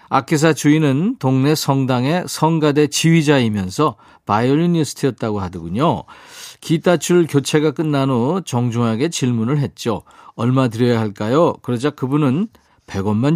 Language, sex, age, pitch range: Korean, male, 40-59, 120-165 Hz